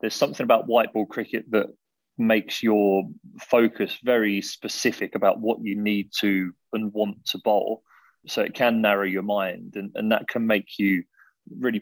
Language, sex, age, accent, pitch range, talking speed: English, male, 30-49, British, 100-115 Hz, 175 wpm